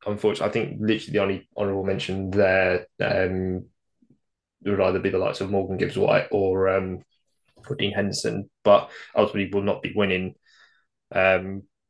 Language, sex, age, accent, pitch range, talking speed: English, male, 10-29, British, 95-105 Hz, 150 wpm